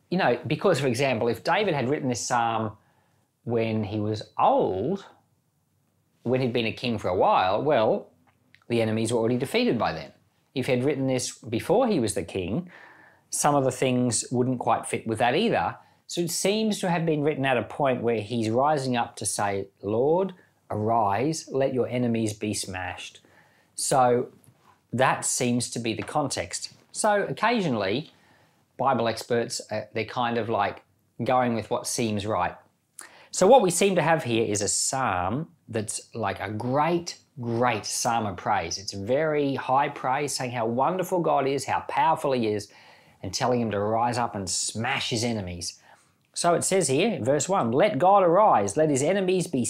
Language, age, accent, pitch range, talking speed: English, 40-59, Australian, 110-140 Hz, 180 wpm